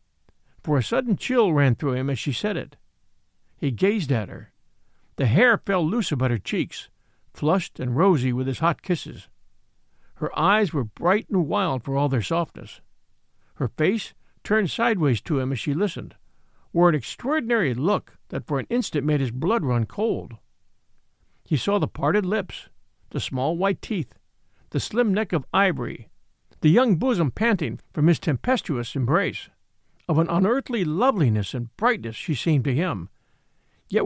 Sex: male